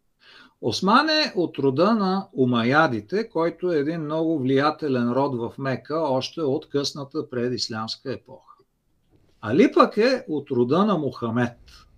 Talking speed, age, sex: 125 wpm, 50-69, male